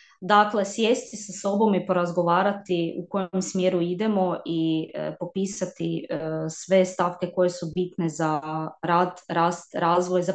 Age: 20-39